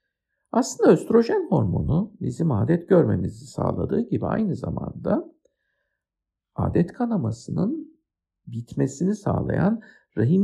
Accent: native